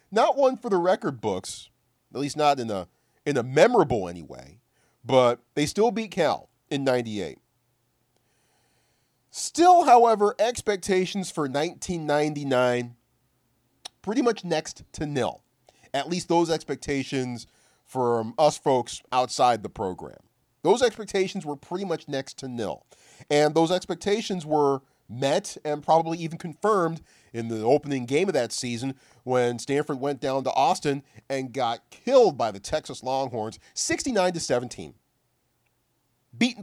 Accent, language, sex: American, English, male